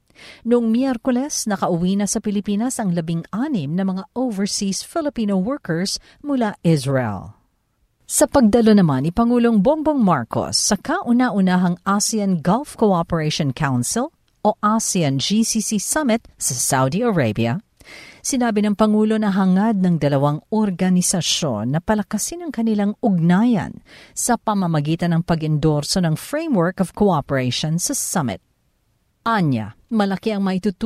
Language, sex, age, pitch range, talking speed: Filipino, female, 50-69, 165-230 Hz, 120 wpm